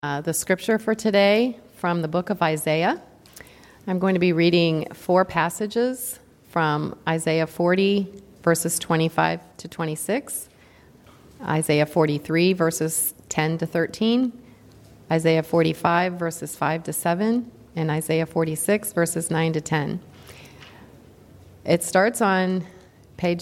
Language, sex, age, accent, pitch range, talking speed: English, female, 30-49, American, 160-185 Hz, 120 wpm